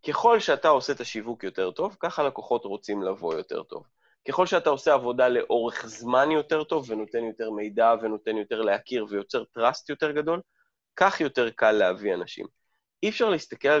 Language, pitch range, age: Hebrew, 115-155 Hz, 20-39